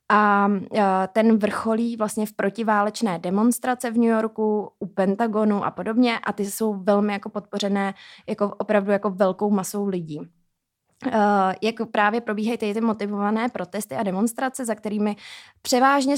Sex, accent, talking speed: female, native, 135 wpm